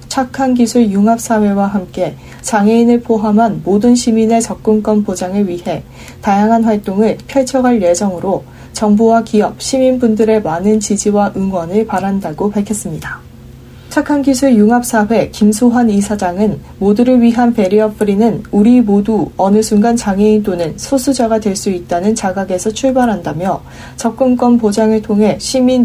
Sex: female